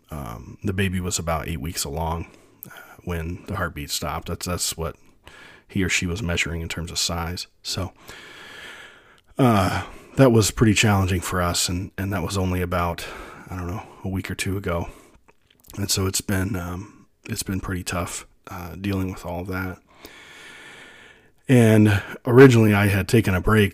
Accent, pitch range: American, 85-100 Hz